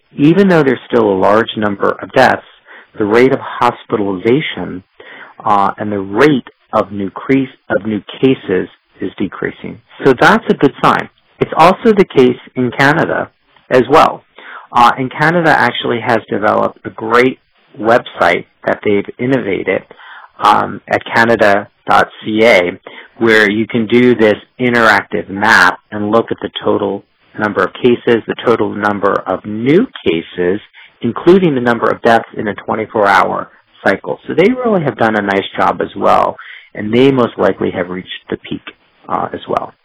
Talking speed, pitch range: 155 wpm, 105-130 Hz